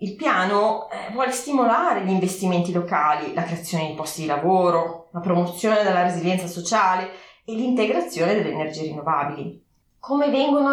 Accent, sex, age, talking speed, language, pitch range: native, female, 20-39, 140 wpm, Italian, 175-245 Hz